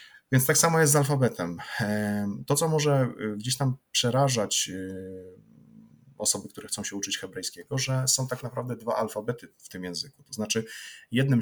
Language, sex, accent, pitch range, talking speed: Polish, male, native, 105-135 Hz, 160 wpm